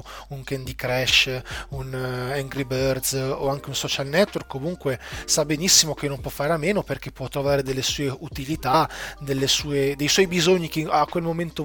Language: Italian